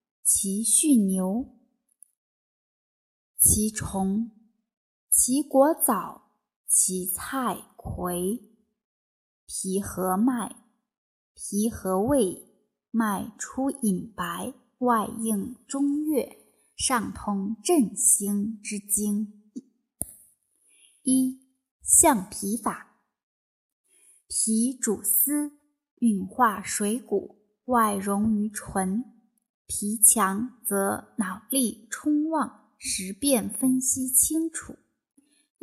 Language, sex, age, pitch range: Chinese, female, 20-39, 205-260 Hz